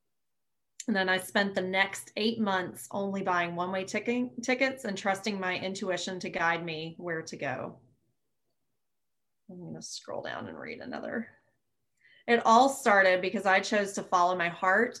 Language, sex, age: English, female, 30-49